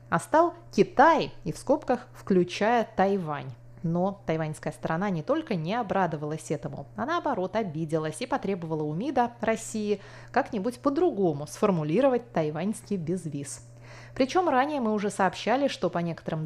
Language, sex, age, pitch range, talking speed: Russian, female, 20-39, 165-240 Hz, 135 wpm